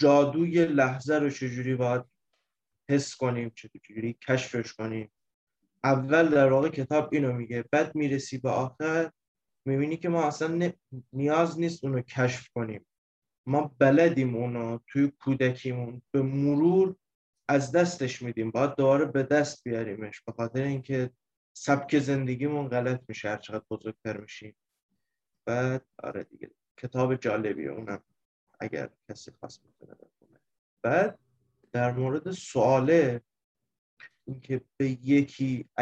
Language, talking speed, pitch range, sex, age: Persian, 120 wpm, 125-145 Hz, male, 20-39